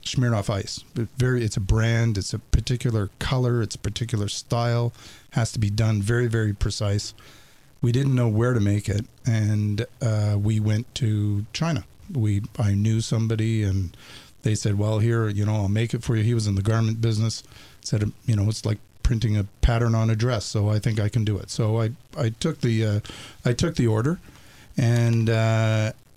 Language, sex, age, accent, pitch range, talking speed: English, male, 50-69, American, 105-125 Hz, 195 wpm